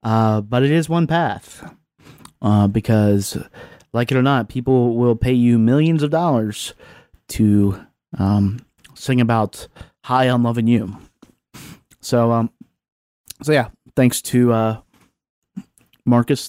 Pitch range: 115-140 Hz